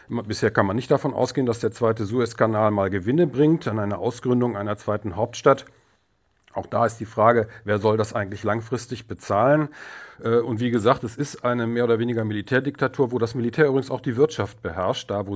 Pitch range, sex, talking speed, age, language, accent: 110-135 Hz, male, 195 wpm, 40-59, German, German